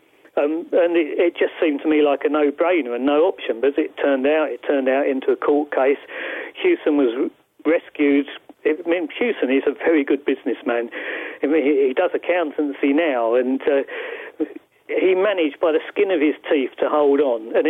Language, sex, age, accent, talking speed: English, male, 40-59, British, 200 wpm